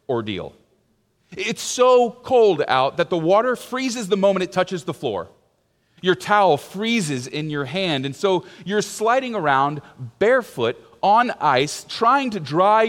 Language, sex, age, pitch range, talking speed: English, male, 30-49, 150-210 Hz, 150 wpm